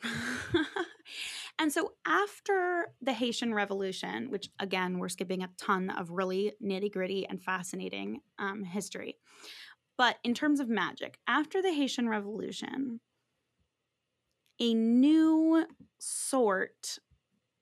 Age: 20-39